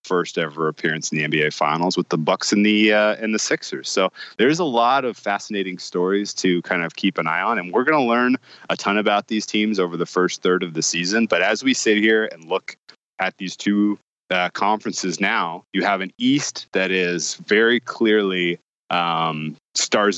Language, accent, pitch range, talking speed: English, American, 90-105 Hz, 210 wpm